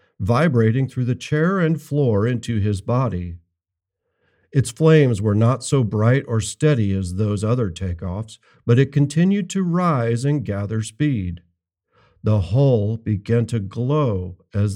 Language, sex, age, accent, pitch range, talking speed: English, male, 50-69, American, 105-150 Hz, 140 wpm